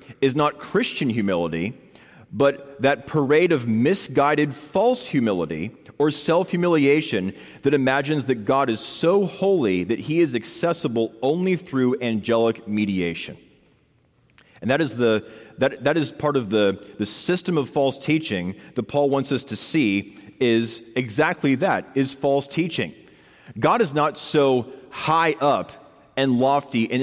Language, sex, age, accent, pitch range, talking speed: English, male, 30-49, American, 125-165 Hz, 140 wpm